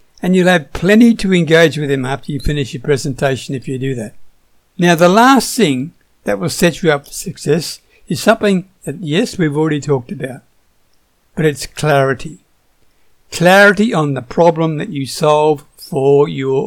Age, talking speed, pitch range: 60-79, 175 wpm, 145-195 Hz